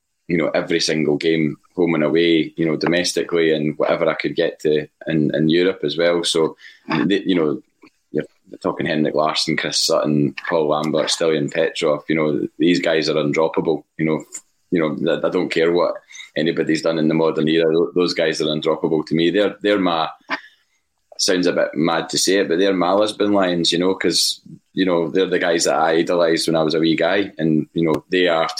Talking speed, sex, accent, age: 210 wpm, male, British, 20-39